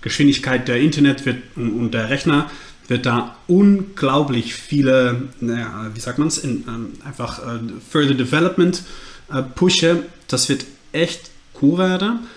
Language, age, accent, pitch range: German, 30-49, German, 120-155 Hz